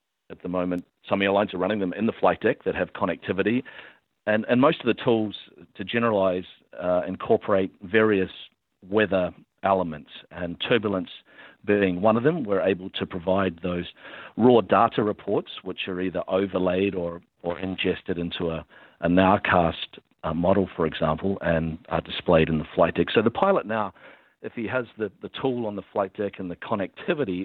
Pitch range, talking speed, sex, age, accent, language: 90-105 Hz, 180 wpm, male, 50-69, Australian, English